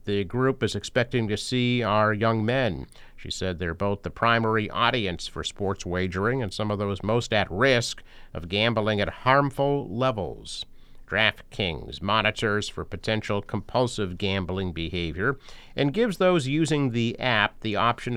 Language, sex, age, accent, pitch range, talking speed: English, male, 50-69, American, 100-130 Hz, 150 wpm